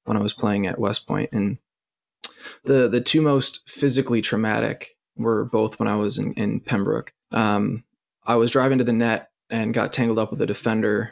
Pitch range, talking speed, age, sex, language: 105-115 Hz, 195 wpm, 20-39, male, English